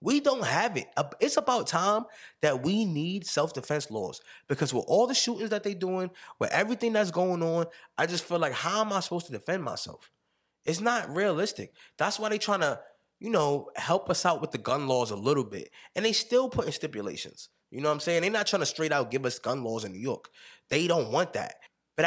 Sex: male